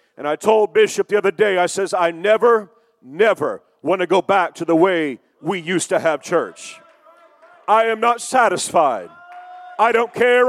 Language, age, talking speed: English, 40-59, 175 wpm